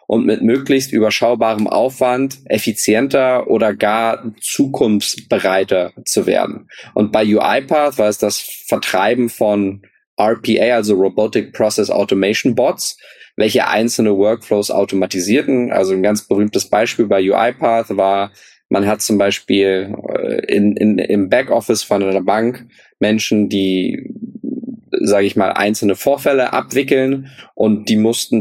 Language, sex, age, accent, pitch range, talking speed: German, male, 20-39, German, 100-115 Hz, 120 wpm